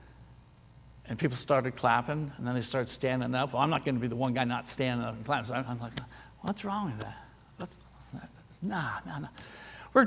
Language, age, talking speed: English, 60-79, 210 wpm